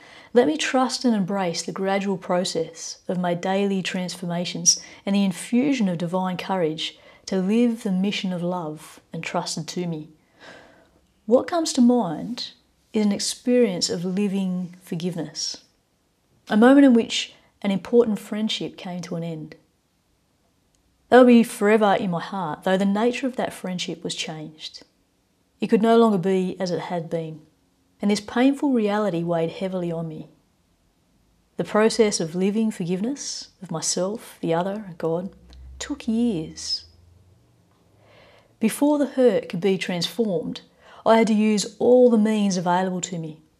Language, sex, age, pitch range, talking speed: English, female, 30-49, 170-220 Hz, 150 wpm